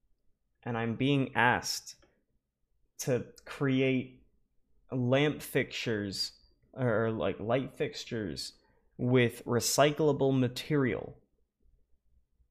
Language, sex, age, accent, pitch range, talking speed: English, male, 20-39, American, 120-165 Hz, 70 wpm